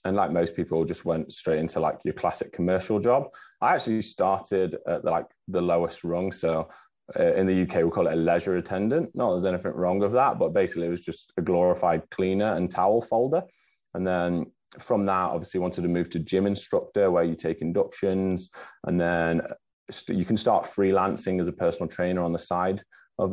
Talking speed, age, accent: 200 wpm, 20-39, British